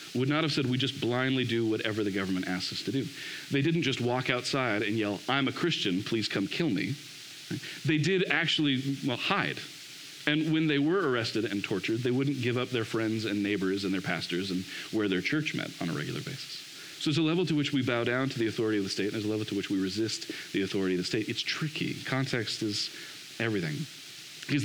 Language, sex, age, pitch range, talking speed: English, male, 40-59, 110-145 Hz, 230 wpm